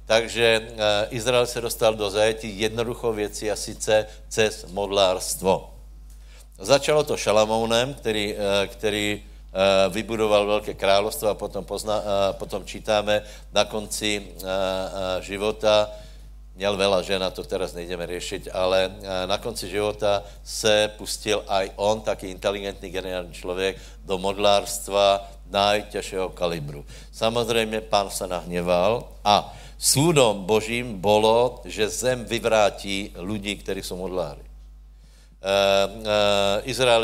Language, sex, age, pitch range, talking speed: Slovak, male, 60-79, 95-110 Hz, 110 wpm